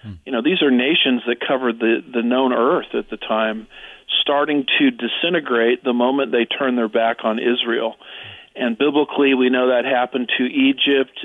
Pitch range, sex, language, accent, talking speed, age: 120-145 Hz, male, English, American, 175 wpm, 50-69